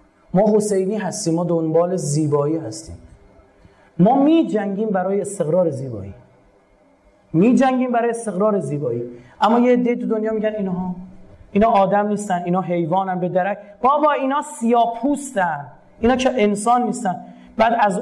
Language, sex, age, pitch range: Persian, male, 30-49, 165-225 Hz